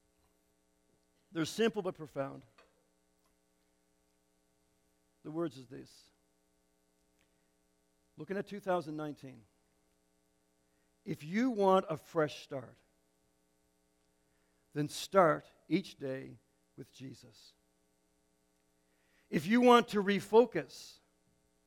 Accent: American